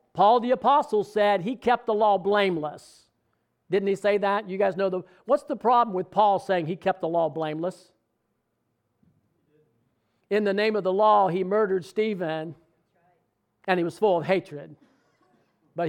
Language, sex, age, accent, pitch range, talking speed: English, male, 50-69, American, 180-220 Hz, 165 wpm